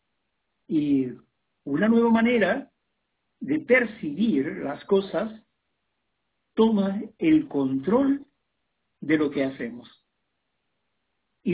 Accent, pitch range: Mexican, 155-235 Hz